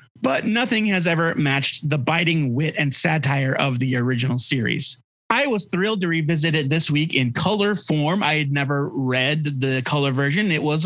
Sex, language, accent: male, English, American